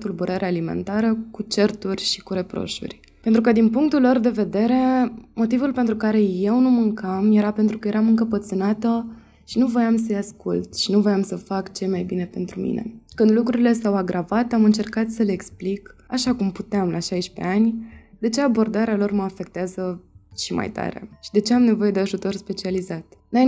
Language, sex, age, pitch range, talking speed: Romanian, female, 20-39, 185-225 Hz, 185 wpm